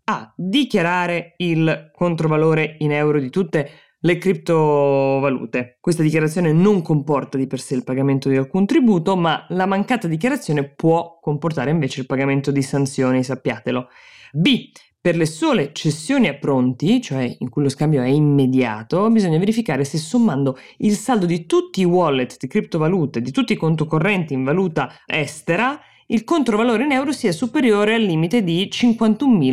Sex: female